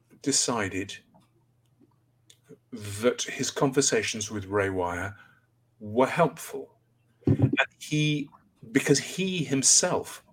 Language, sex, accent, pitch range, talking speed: English, male, British, 110-135 Hz, 80 wpm